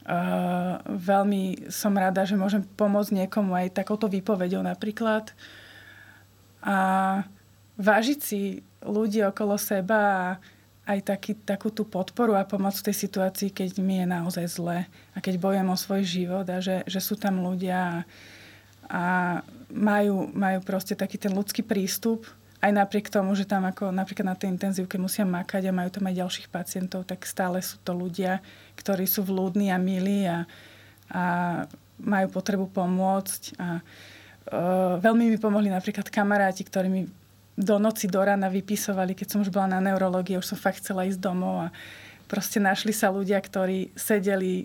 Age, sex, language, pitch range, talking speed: 20-39, female, Slovak, 185-205 Hz, 160 wpm